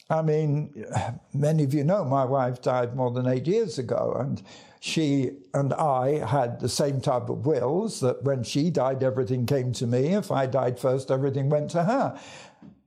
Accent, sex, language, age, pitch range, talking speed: British, male, English, 60-79, 130-200 Hz, 185 wpm